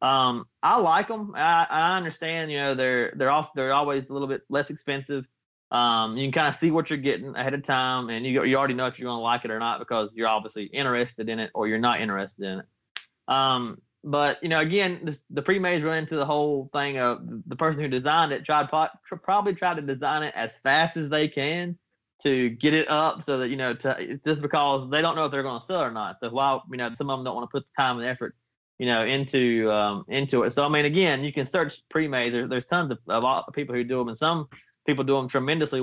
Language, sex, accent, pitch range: English, male, American, 125-155 Hz